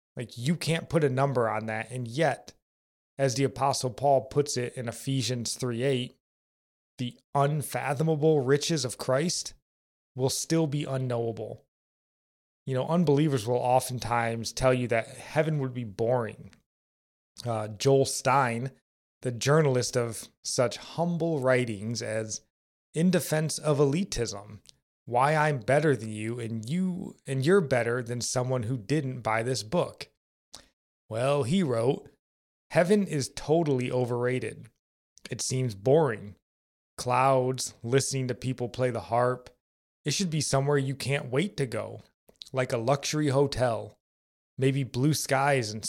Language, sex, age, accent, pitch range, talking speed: English, male, 30-49, American, 115-140 Hz, 140 wpm